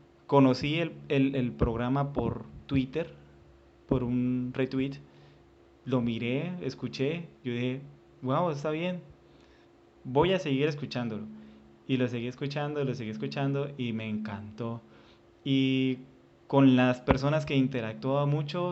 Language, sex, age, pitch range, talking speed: Spanish, male, 20-39, 115-140 Hz, 125 wpm